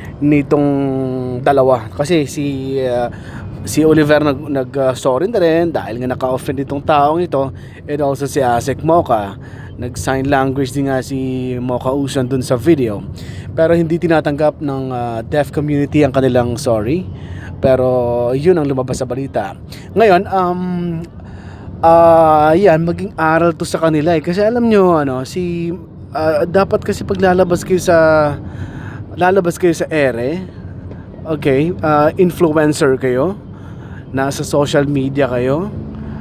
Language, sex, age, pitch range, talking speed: Filipino, male, 20-39, 130-160 Hz, 140 wpm